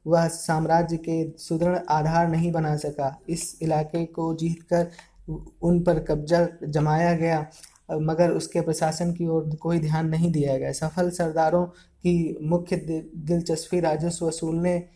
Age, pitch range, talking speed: 20-39, 155-170 Hz, 135 wpm